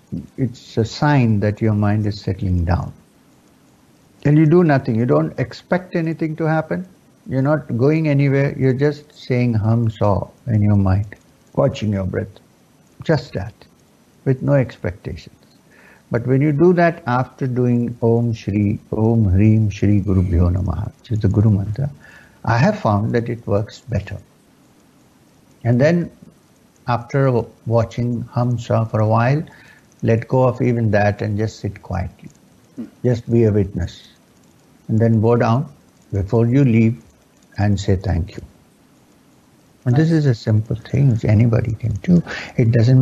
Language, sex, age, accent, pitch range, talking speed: English, male, 60-79, Indian, 105-125 Hz, 150 wpm